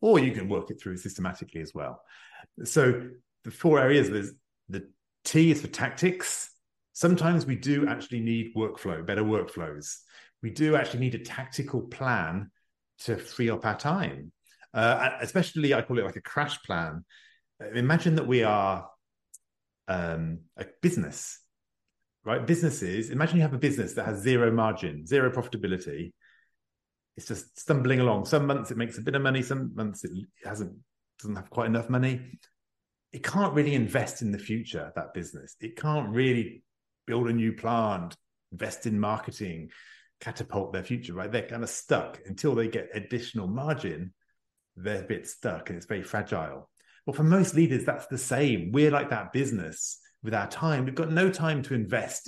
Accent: British